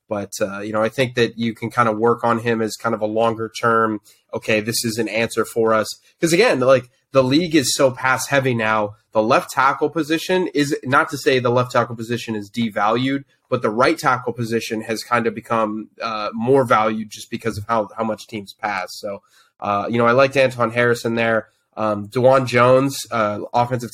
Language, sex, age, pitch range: English, male, 20-39, 110-130 Hz